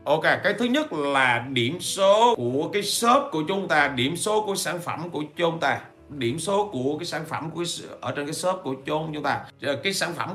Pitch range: 125-180 Hz